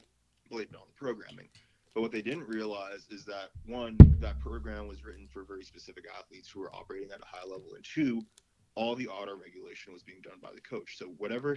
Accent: American